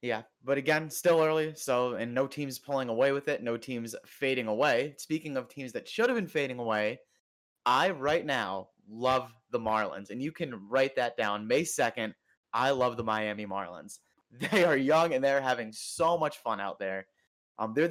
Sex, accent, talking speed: male, American, 195 wpm